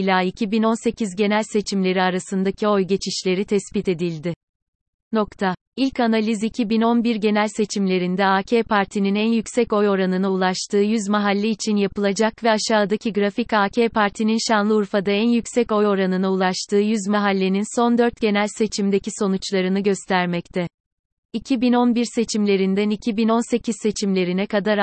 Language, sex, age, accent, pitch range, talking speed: Turkish, female, 30-49, native, 190-225 Hz, 120 wpm